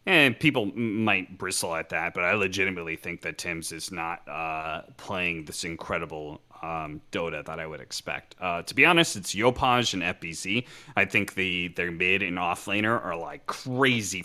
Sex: male